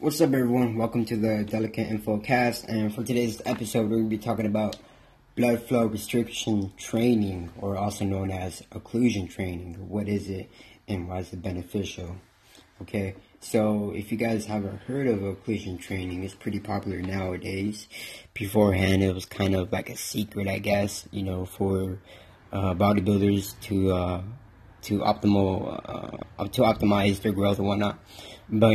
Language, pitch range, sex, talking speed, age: English, 95-110 Hz, male, 160 wpm, 20-39